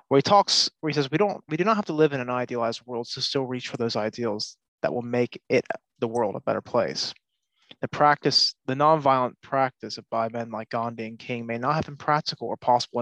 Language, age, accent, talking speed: English, 20-39, American, 240 wpm